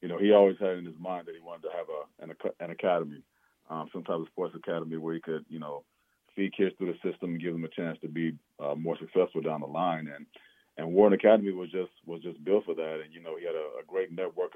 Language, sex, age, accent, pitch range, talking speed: English, male, 40-59, American, 85-100 Hz, 270 wpm